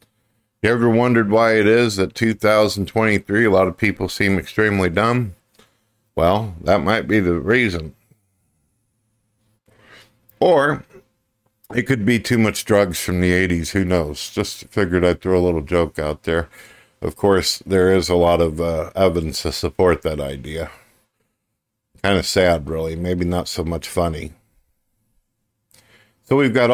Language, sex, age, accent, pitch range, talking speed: English, male, 50-69, American, 90-110 Hz, 150 wpm